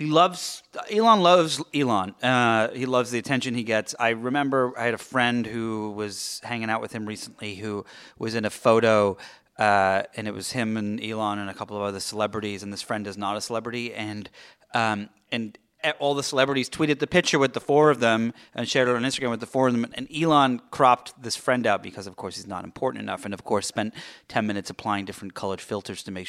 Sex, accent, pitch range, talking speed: male, American, 100-125 Hz, 225 wpm